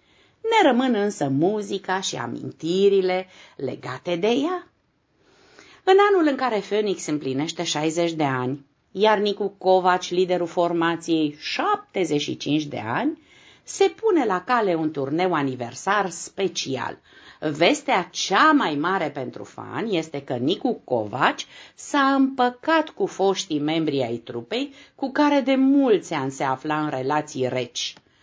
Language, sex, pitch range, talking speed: Romanian, female, 150-250 Hz, 130 wpm